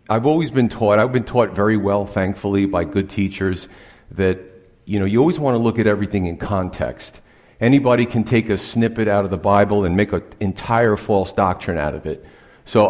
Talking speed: 205 wpm